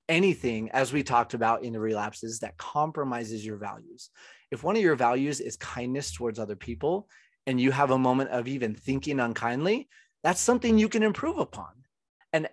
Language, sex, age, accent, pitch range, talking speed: English, male, 30-49, American, 110-140 Hz, 180 wpm